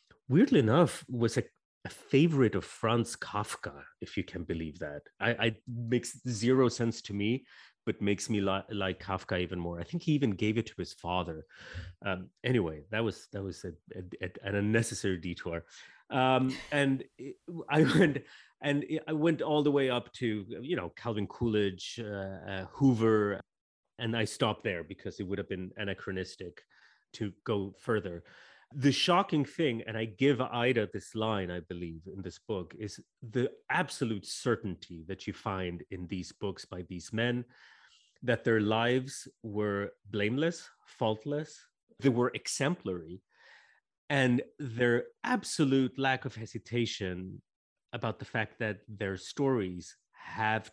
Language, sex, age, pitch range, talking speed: English, male, 30-49, 95-125 Hz, 155 wpm